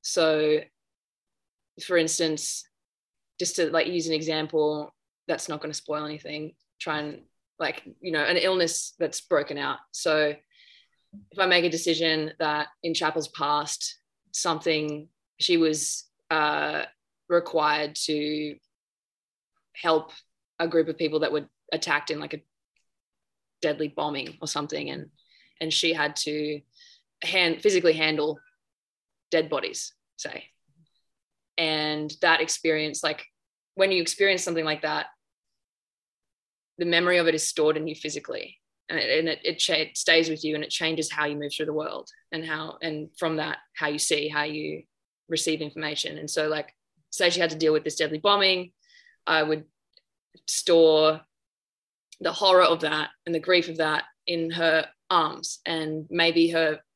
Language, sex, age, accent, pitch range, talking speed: English, female, 20-39, Australian, 155-170 Hz, 155 wpm